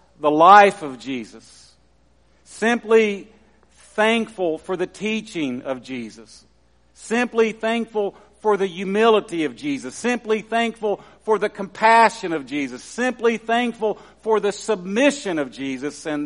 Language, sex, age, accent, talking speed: English, male, 50-69, American, 120 wpm